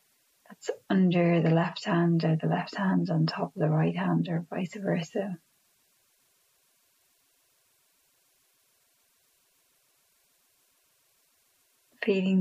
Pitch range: 180-210 Hz